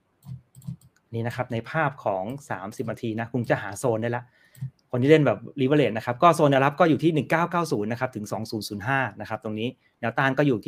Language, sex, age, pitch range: Thai, male, 30-49, 115-145 Hz